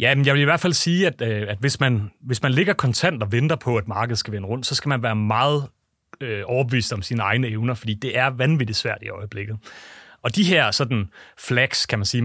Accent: native